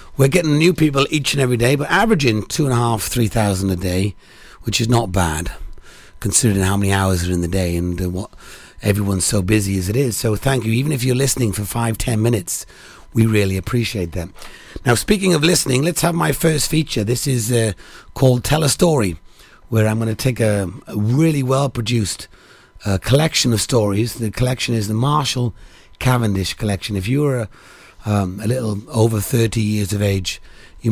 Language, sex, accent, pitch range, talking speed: English, male, British, 100-130 Hz, 195 wpm